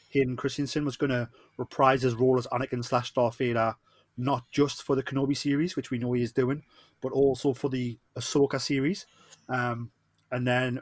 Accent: British